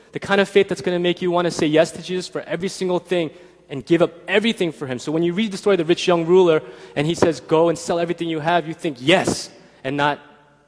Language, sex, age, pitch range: Korean, male, 20-39, 115-150 Hz